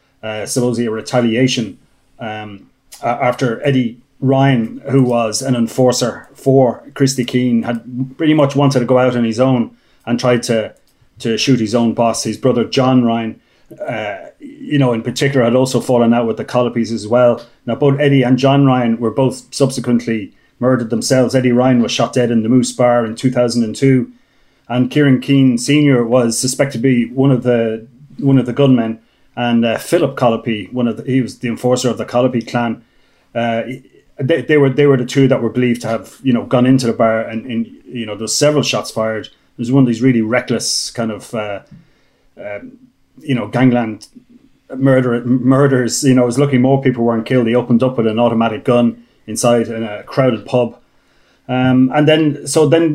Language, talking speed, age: English, 195 wpm, 30-49